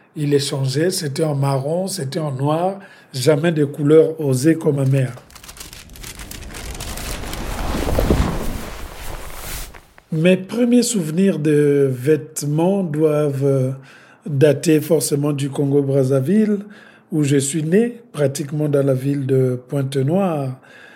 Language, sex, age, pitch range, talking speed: French, male, 50-69, 140-165 Hz, 105 wpm